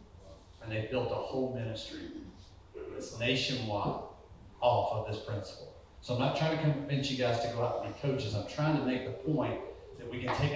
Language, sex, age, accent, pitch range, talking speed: English, male, 40-59, American, 110-145 Hz, 200 wpm